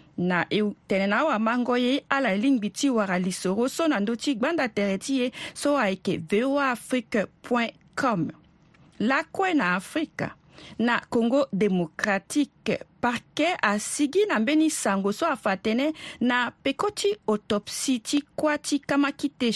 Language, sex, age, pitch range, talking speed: French, female, 40-59, 200-275 Hz, 115 wpm